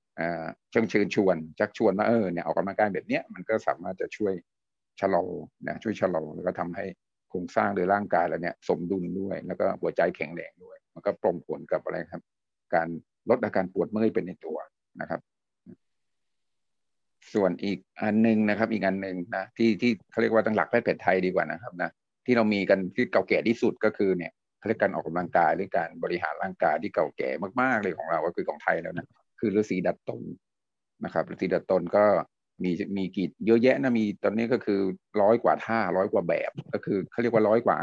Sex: male